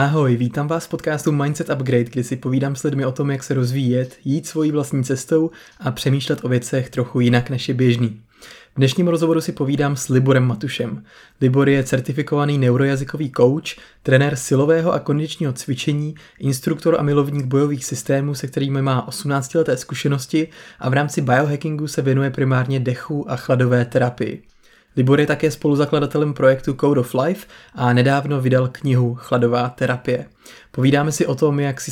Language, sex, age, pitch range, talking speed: Czech, male, 20-39, 130-150 Hz, 170 wpm